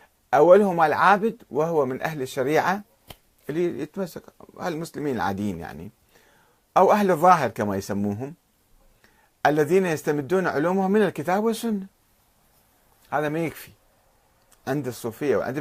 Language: Arabic